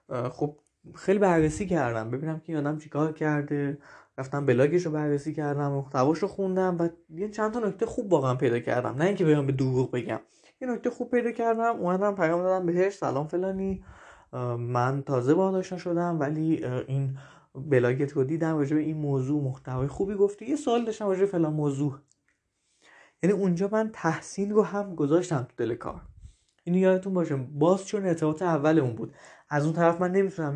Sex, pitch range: male, 140-185 Hz